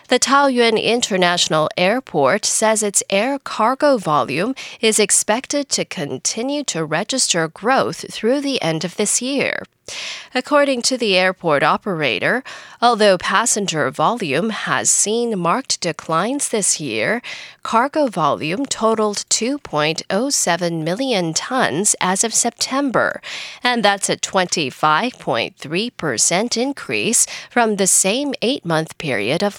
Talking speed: 115 wpm